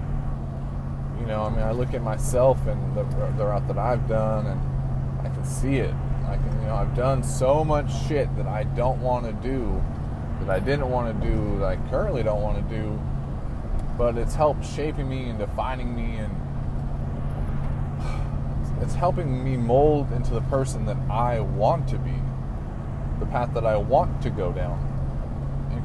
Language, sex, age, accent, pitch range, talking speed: English, male, 20-39, American, 120-130 Hz, 180 wpm